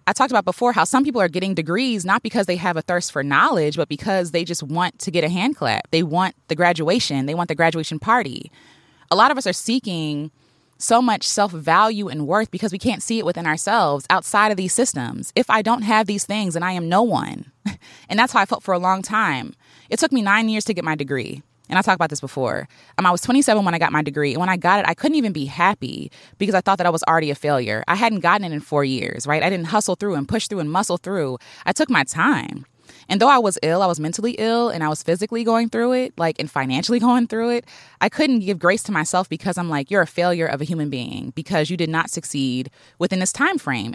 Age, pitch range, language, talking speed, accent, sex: 20-39, 160-220 Hz, English, 260 wpm, American, female